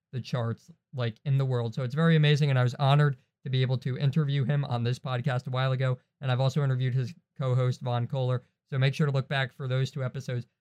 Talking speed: 250 wpm